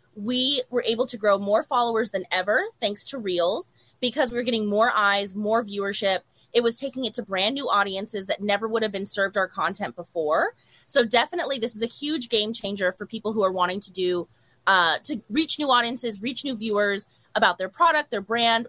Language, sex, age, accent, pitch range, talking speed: English, female, 20-39, American, 195-240 Hz, 210 wpm